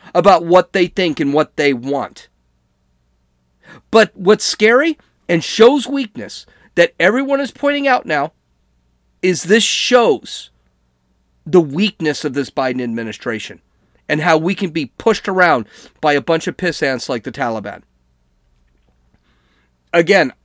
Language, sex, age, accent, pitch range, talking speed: English, male, 40-59, American, 125-200 Hz, 135 wpm